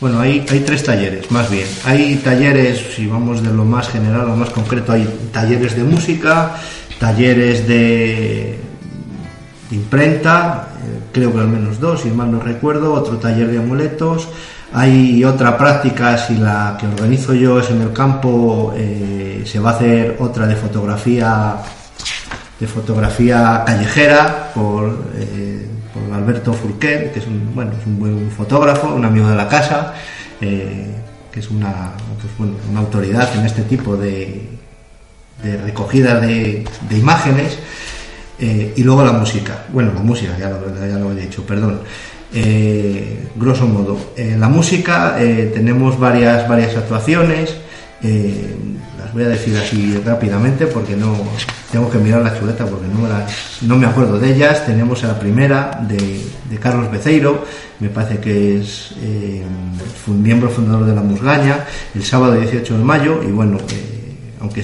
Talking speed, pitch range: 160 wpm, 105-125 Hz